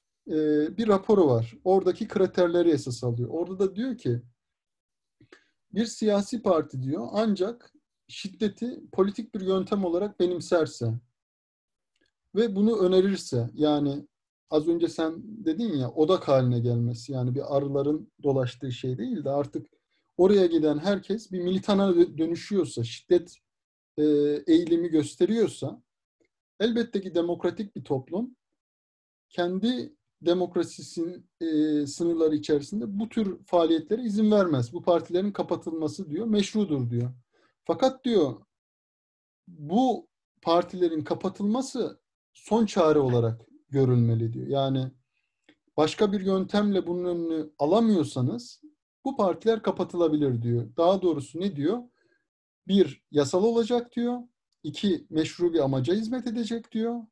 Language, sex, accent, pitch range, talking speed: Turkish, male, native, 145-205 Hz, 110 wpm